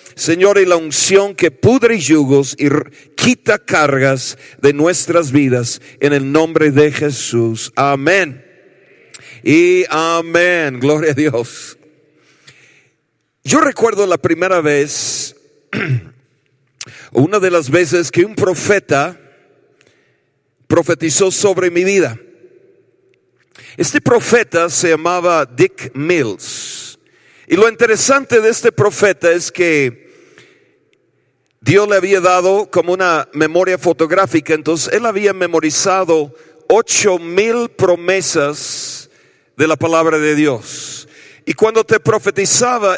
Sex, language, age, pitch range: male, Spanish, 50-69, 150-210 Hz